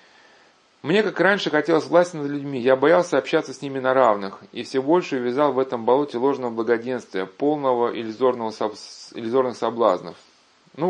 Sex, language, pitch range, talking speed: male, Russian, 120-150 Hz, 150 wpm